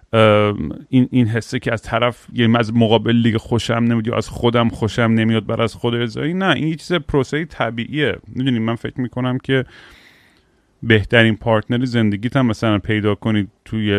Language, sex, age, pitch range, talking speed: Persian, male, 30-49, 100-120 Hz, 165 wpm